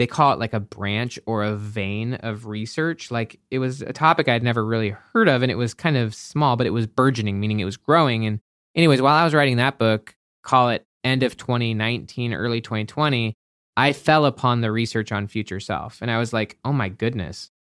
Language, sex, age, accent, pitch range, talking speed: English, male, 20-39, American, 110-135 Hz, 220 wpm